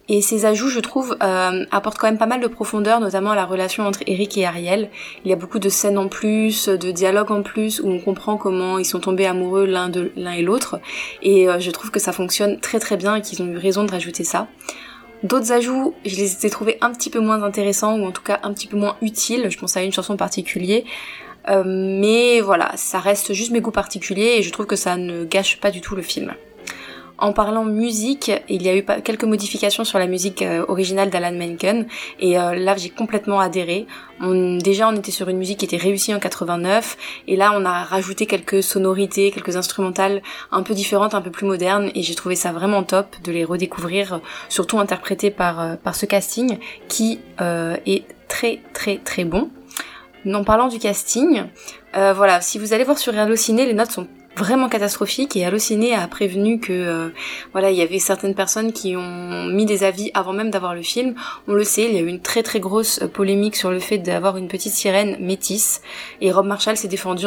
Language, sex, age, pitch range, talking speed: French, female, 20-39, 185-215 Hz, 220 wpm